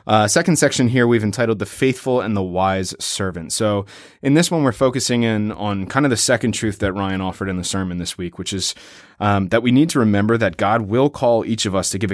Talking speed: 245 wpm